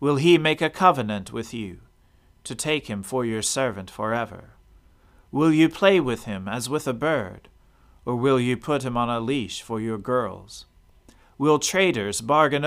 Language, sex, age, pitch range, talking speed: English, male, 40-59, 95-140 Hz, 175 wpm